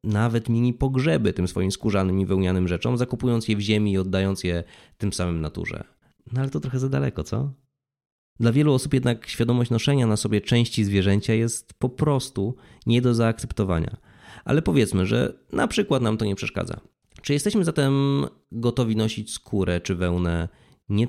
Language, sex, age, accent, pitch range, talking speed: Polish, male, 20-39, native, 90-120 Hz, 170 wpm